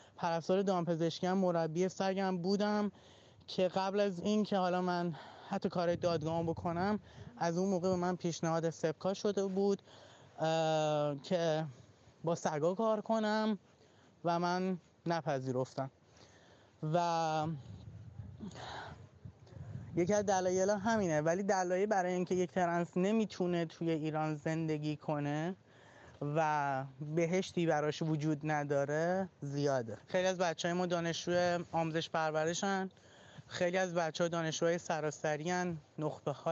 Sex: male